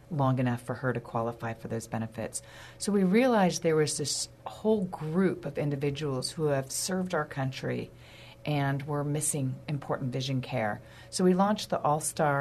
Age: 40-59